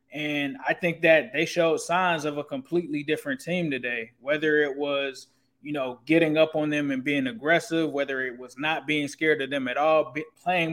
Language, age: English, 20-39